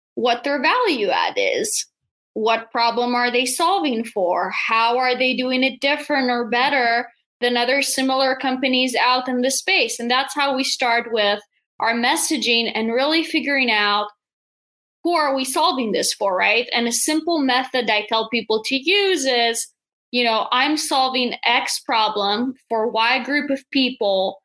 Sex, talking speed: female, 165 wpm